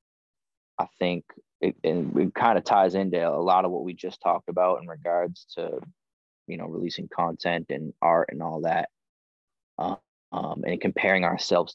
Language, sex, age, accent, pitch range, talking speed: English, male, 20-39, American, 90-100 Hz, 165 wpm